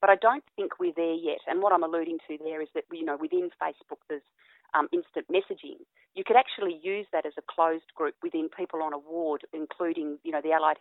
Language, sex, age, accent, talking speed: English, female, 40-59, Australian, 235 wpm